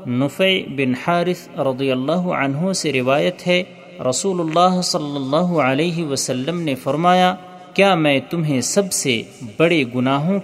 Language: Urdu